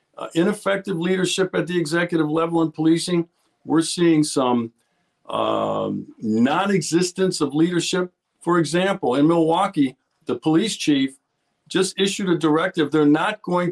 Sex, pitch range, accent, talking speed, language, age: male, 155-195 Hz, American, 130 wpm, English, 50-69